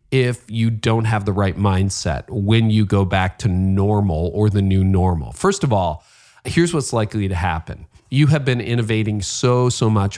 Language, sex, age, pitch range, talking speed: English, male, 40-59, 100-130 Hz, 190 wpm